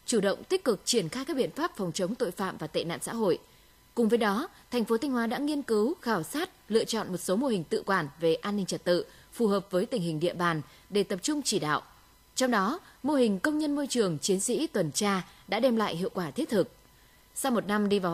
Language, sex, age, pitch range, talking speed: Vietnamese, female, 20-39, 185-255 Hz, 260 wpm